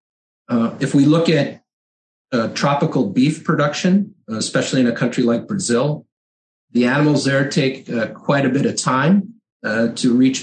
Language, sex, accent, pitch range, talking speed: English, male, American, 115-155 Hz, 160 wpm